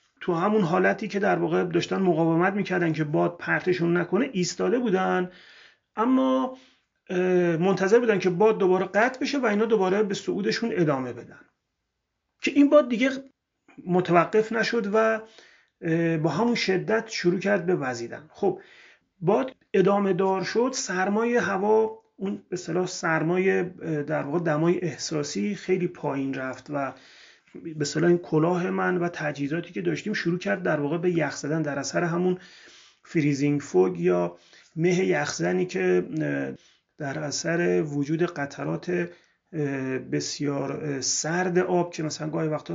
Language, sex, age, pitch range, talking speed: Persian, male, 30-49, 155-205 Hz, 140 wpm